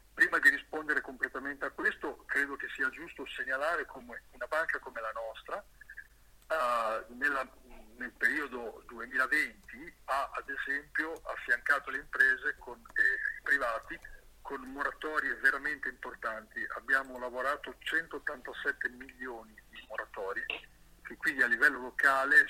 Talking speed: 115 wpm